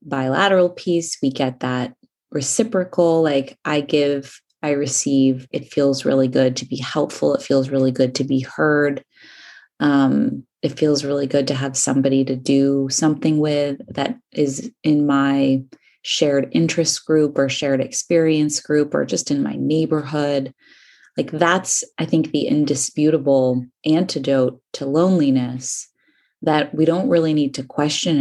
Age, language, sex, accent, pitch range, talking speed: 20-39, English, female, American, 135-160 Hz, 145 wpm